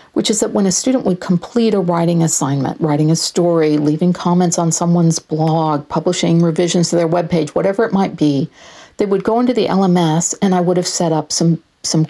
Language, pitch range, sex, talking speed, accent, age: English, 160-205 Hz, female, 210 wpm, American, 50-69